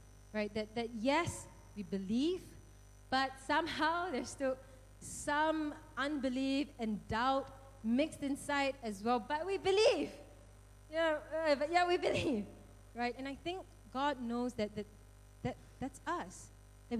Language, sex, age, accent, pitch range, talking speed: English, female, 20-39, Malaysian, 205-285 Hz, 135 wpm